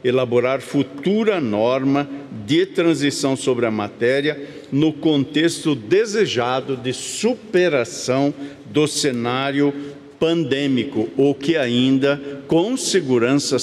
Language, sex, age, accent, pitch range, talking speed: Portuguese, male, 50-69, Brazilian, 120-145 Hz, 90 wpm